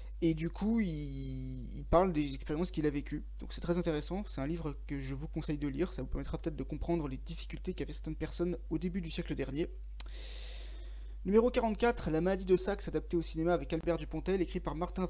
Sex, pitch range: male, 155-190 Hz